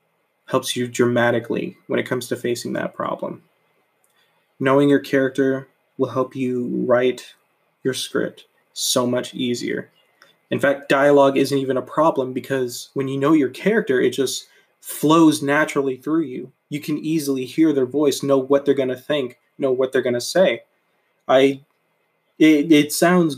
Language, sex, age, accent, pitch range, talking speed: English, male, 20-39, American, 130-150 Hz, 155 wpm